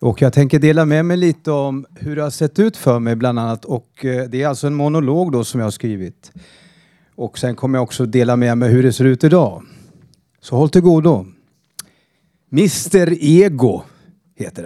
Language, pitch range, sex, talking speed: Swedish, 130-185 Hz, male, 195 wpm